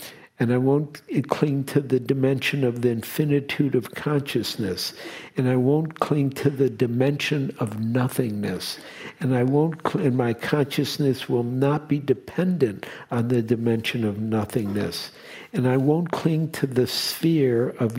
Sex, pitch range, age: male, 120-145 Hz, 60-79